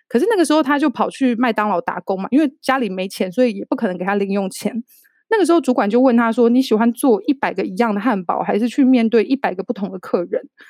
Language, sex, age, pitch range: Chinese, female, 20-39, 215-280 Hz